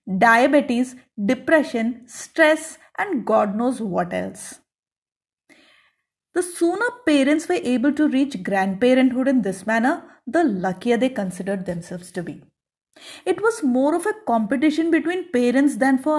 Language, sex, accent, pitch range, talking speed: English, female, Indian, 210-290 Hz, 135 wpm